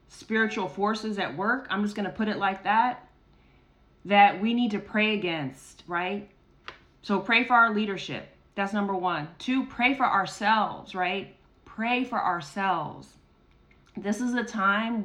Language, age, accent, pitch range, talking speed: English, 30-49, American, 185-225 Hz, 155 wpm